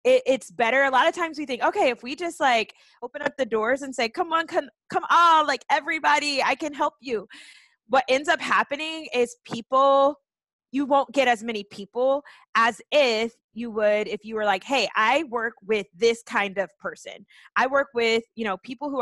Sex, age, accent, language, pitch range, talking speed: female, 20-39, American, English, 220-290 Hz, 205 wpm